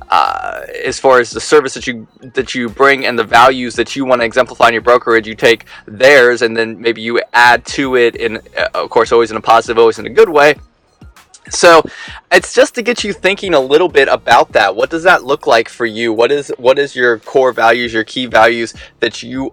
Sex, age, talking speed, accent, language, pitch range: male, 20-39, 230 wpm, American, English, 115-140 Hz